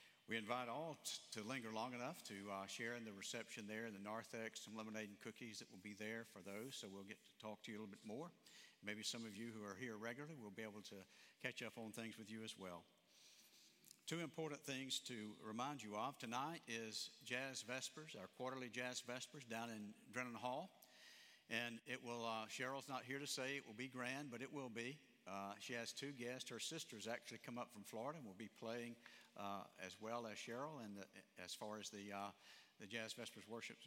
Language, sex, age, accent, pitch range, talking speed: English, male, 60-79, American, 110-130 Hz, 220 wpm